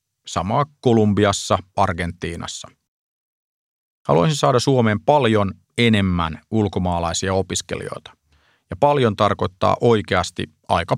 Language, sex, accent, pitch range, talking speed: Finnish, male, native, 95-115 Hz, 80 wpm